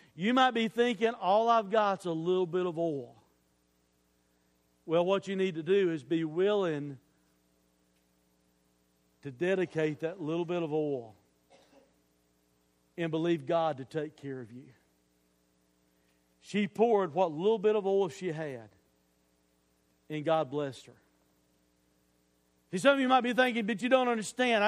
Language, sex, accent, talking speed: English, male, American, 150 wpm